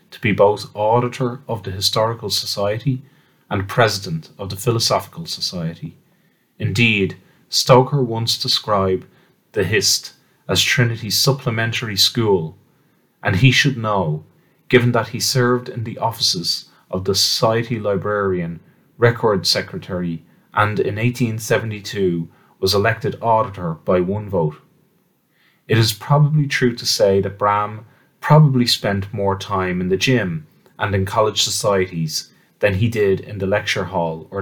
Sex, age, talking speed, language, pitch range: male, 30-49, 135 wpm, English, 95-125 Hz